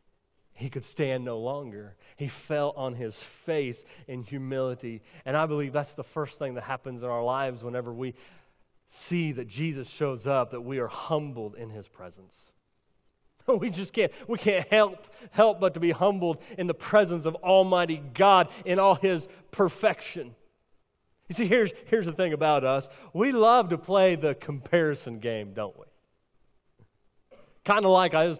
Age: 30-49